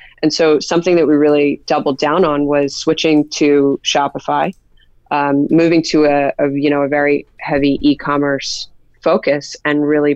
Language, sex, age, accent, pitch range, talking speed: English, female, 20-39, American, 145-160 Hz, 140 wpm